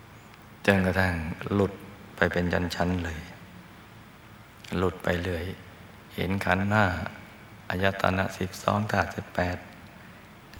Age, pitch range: 60-79, 90-105 Hz